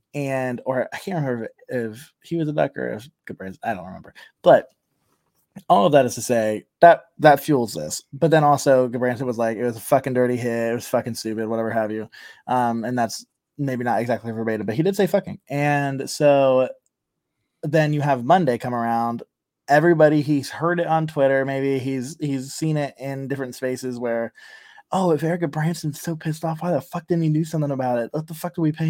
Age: 20-39